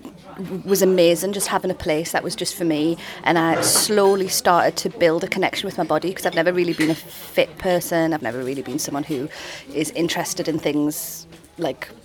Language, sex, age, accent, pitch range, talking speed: English, female, 30-49, British, 160-190 Hz, 205 wpm